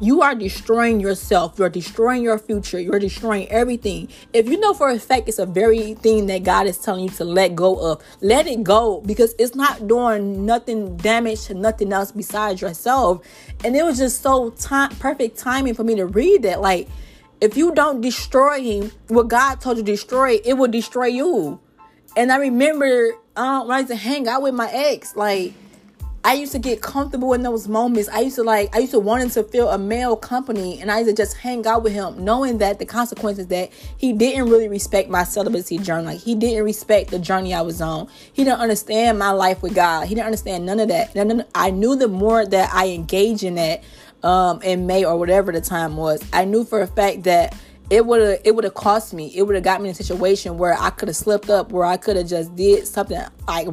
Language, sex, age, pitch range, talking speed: English, female, 20-39, 190-240 Hz, 225 wpm